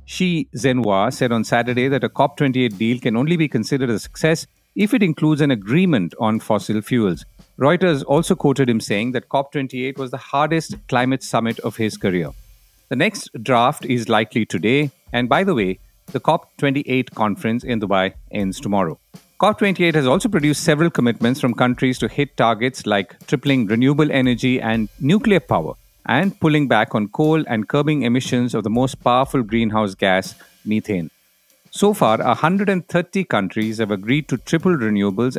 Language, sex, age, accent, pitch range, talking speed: English, male, 50-69, Indian, 110-145 Hz, 165 wpm